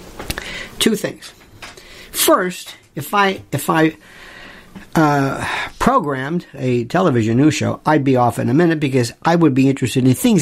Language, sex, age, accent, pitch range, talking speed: English, male, 50-69, American, 120-180 Hz, 145 wpm